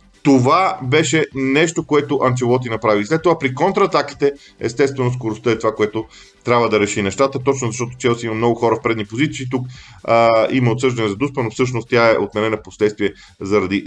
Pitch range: 105-135 Hz